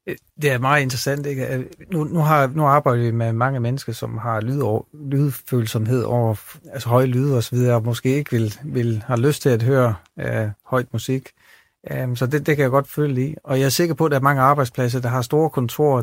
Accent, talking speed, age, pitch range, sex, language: native, 225 wpm, 40-59, 120-140 Hz, male, Danish